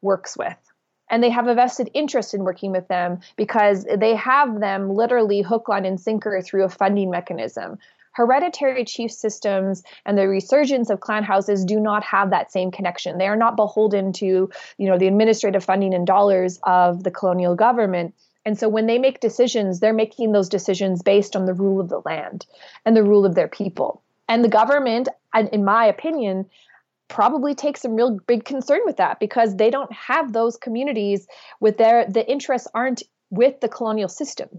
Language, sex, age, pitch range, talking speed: English, female, 20-39, 190-230 Hz, 185 wpm